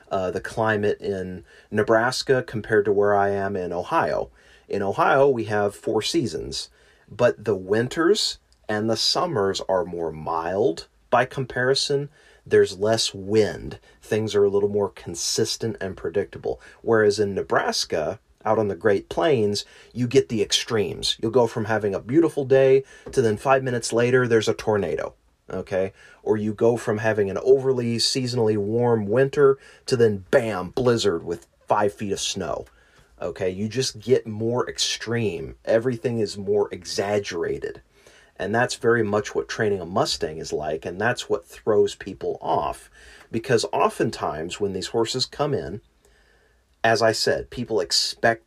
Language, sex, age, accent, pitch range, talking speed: English, male, 30-49, American, 105-165 Hz, 155 wpm